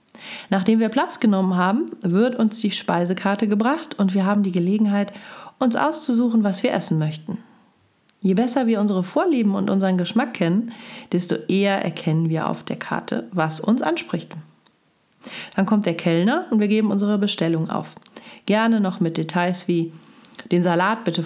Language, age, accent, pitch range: German, 40-59, German, 180-225 Hz